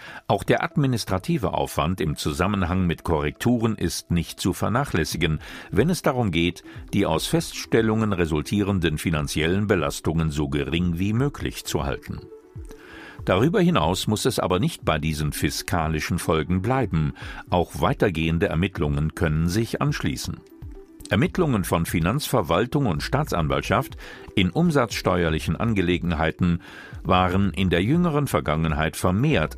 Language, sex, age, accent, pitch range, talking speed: German, male, 50-69, German, 85-110 Hz, 120 wpm